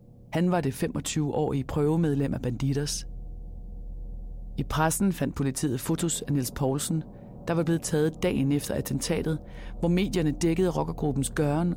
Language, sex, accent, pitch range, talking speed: Danish, female, native, 135-165 Hz, 140 wpm